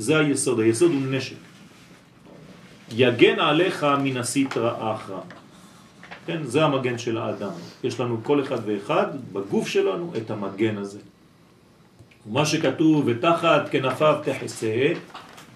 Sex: male